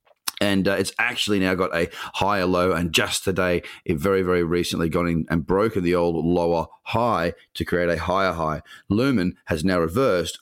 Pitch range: 85-110 Hz